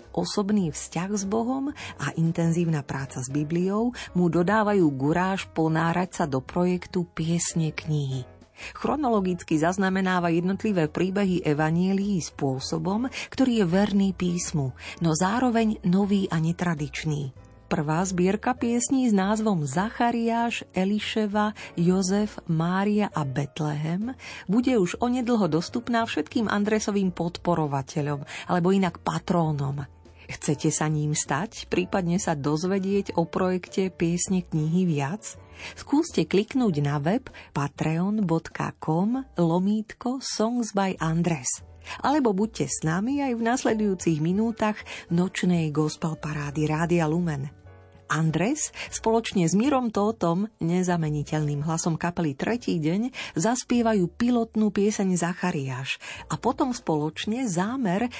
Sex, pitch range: female, 155-210 Hz